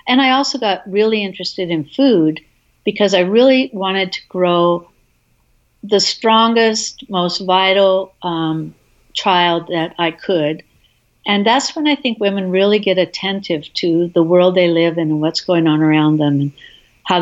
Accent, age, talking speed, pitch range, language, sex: American, 60-79, 160 wpm, 185-235 Hz, English, female